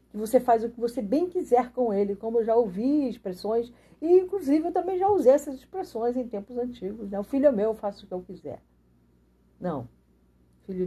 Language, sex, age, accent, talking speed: Portuguese, female, 40-59, Brazilian, 210 wpm